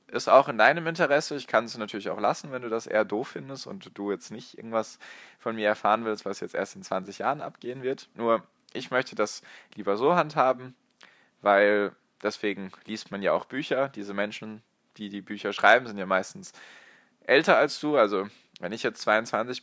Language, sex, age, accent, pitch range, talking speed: German, male, 20-39, German, 100-115 Hz, 200 wpm